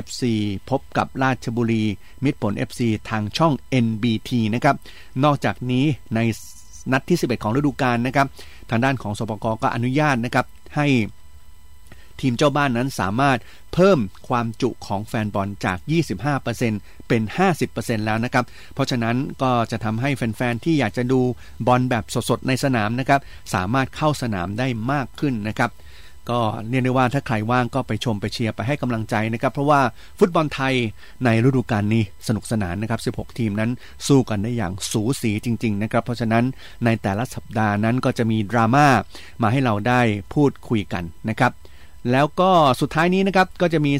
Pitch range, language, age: 110-130 Hz, Thai, 30-49